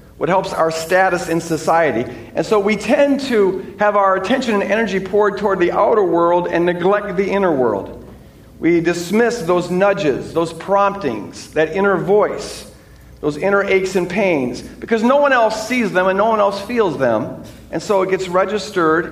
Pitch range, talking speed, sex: 165-215 Hz, 180 wpm, male